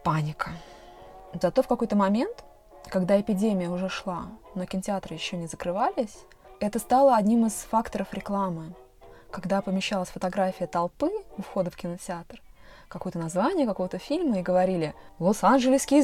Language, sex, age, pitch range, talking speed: Russian, female, 20-39, 185-245 Hz, 130 wpm